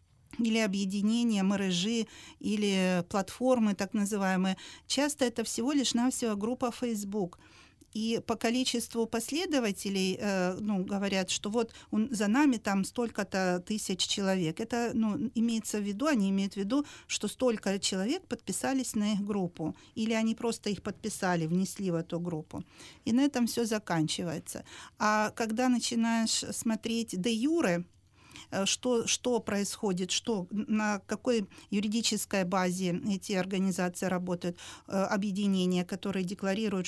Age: 40-59